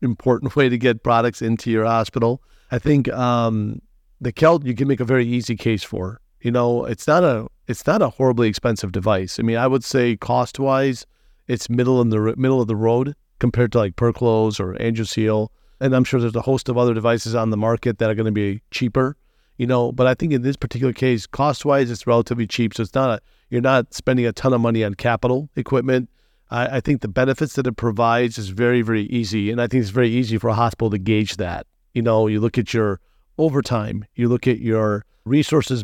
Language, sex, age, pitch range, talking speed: English, male, 40-59, 110-125 Hz, 225 wpm